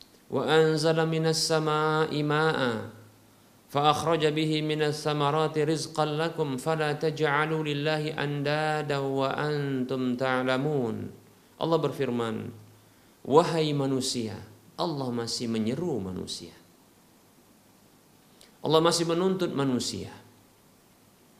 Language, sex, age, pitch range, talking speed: Indonesian, male, 50-69, 135-185 Hz, 40 wpm